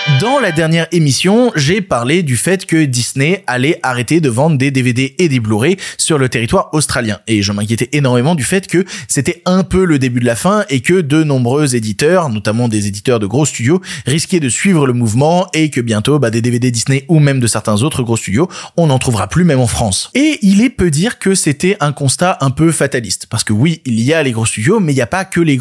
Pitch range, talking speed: 125-180 Hz, 240 wpm